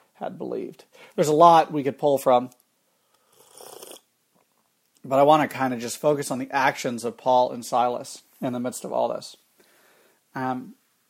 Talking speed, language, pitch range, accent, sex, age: 170 wpm, English, 135-170 Hz, American, male, 40-59